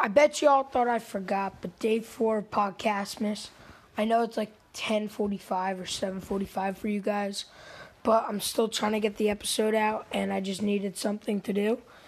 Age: 20-39